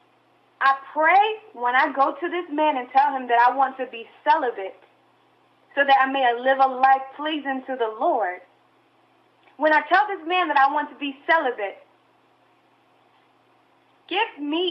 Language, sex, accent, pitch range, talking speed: English, female, American, 240-340 Hz, 165 wpm